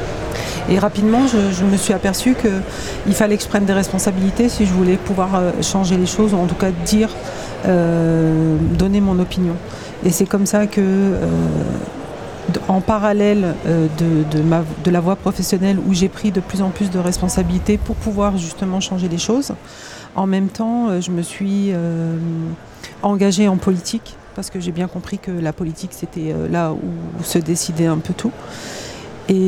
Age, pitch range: 40-59, 170-195 Hz